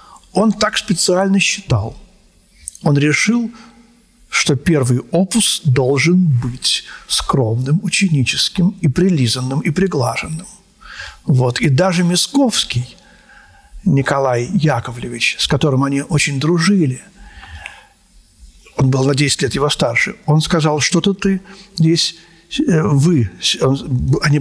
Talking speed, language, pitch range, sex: 105 wpm, Russian, 130-175 Hz, male